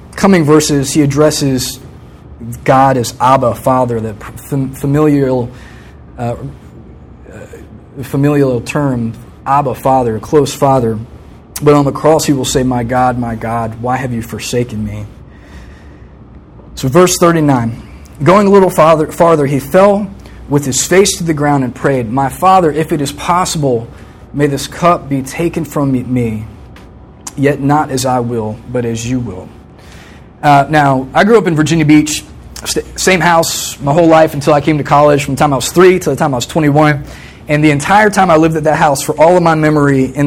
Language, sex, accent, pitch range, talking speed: English, male, American, 125-155 Hz, 175 wpm